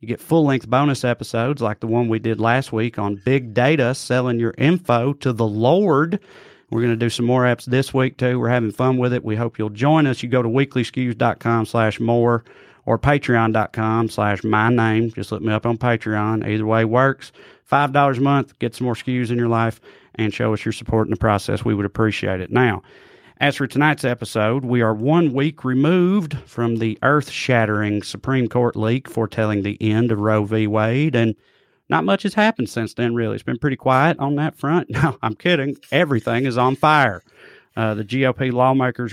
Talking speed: 205 wpm